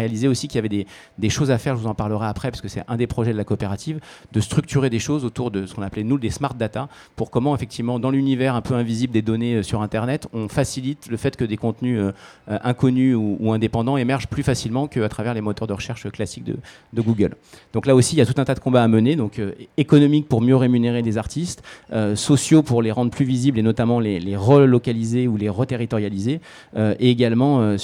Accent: French